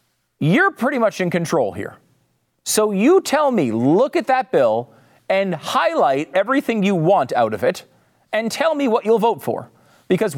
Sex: male